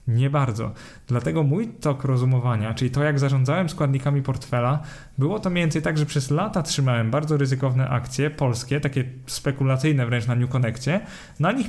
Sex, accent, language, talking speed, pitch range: male, native, Polish, 165 wpm, 125-155 Hz